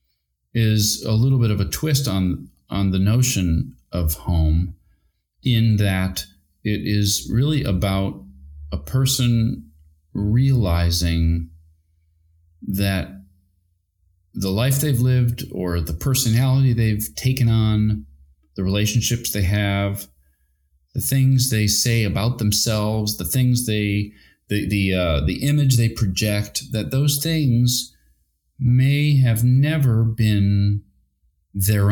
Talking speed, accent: 115 wpm, American